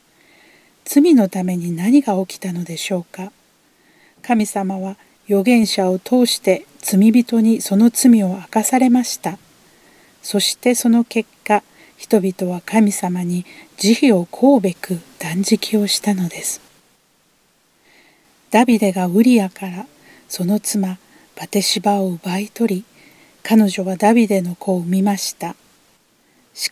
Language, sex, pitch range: Japanese, female, 185-230 Hz